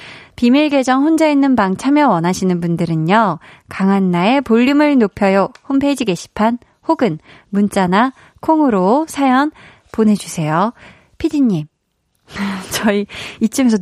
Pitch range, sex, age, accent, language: 185-270 Hz, female, 20-39, native, Korean